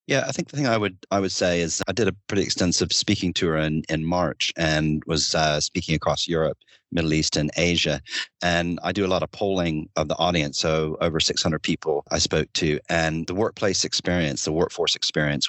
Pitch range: 75-90 Hz